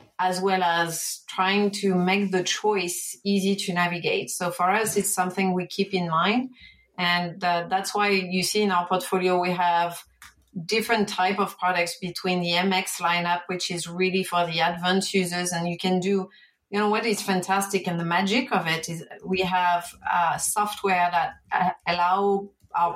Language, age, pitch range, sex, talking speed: English, 30-49, 175-200 Hz, female, 180 wpm